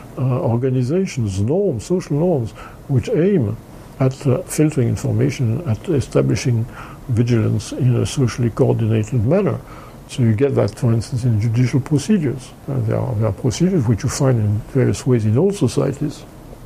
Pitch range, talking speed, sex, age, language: 120-145 Hz, 150 wpm, male, 60-79, English